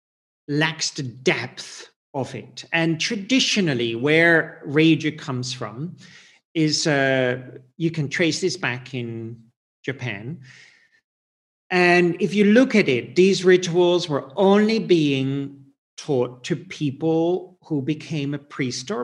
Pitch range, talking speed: 135-190 Hz, 125 wpm